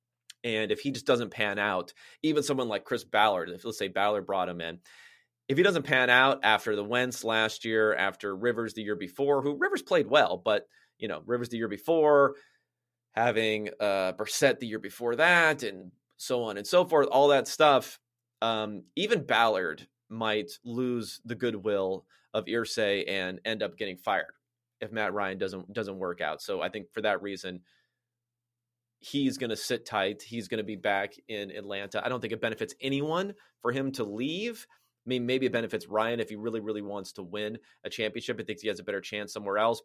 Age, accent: 30-49, American